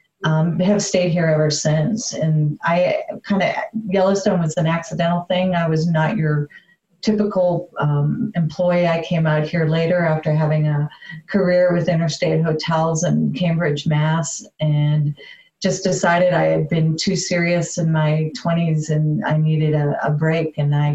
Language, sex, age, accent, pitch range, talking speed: English, female, 40-59, American, 155-185 Hz, 165 wpm